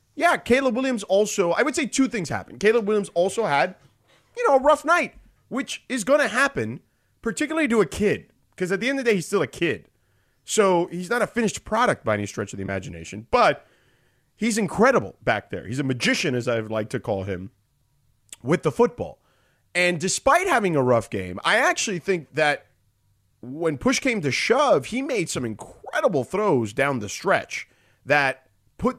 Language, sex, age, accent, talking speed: English, male, 30-49, American, 195 wpm